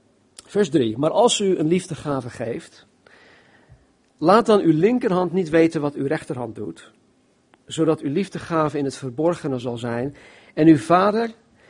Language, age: Dutch, 50-69